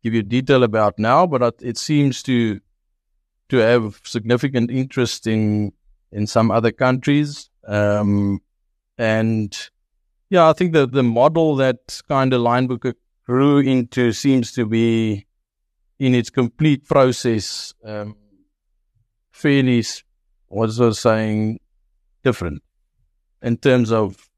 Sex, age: male, 50-69